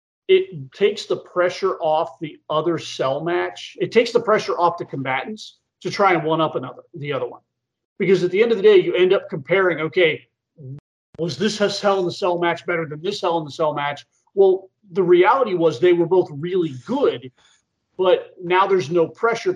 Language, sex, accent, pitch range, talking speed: English, male, American, 165-210 Hz, 205 wpm